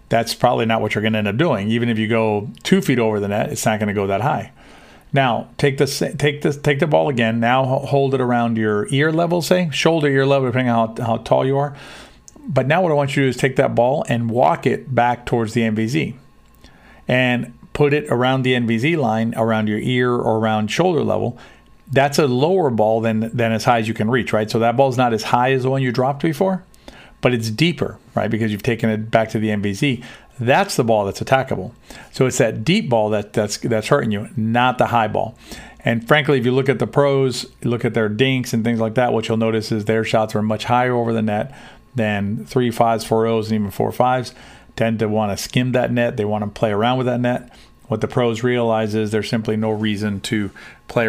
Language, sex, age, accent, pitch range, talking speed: English, male, 50-69, American, 110-130 Hz, 240 wpm